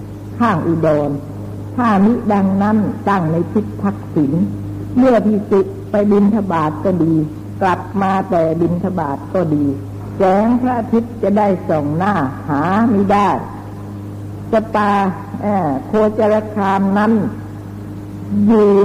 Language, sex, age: Thai, female, 60-79